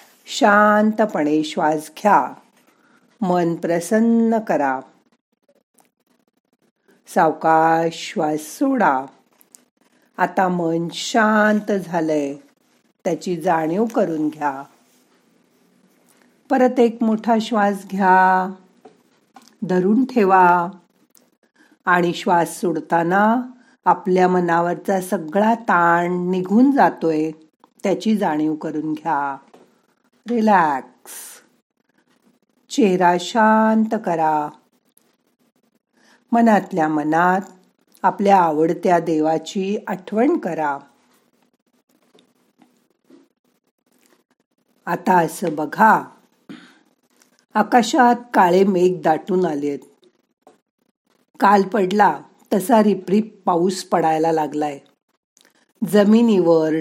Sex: female